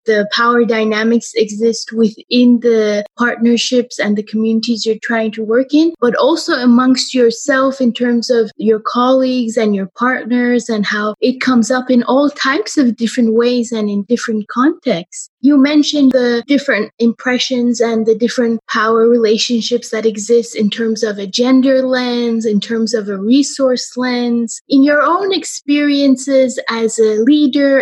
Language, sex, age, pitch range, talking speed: English, female, 20-39, 220-260 Hz, 155 wpm